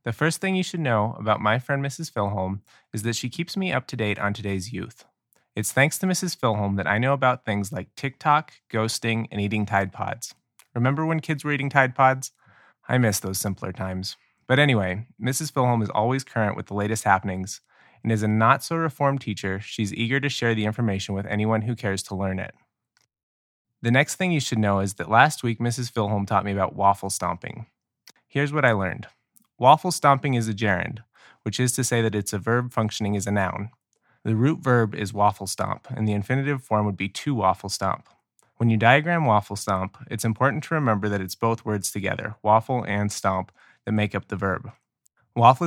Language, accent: English, American